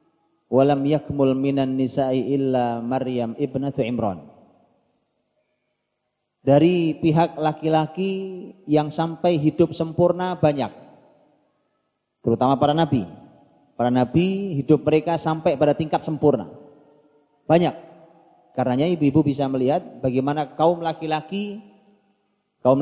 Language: Indonesian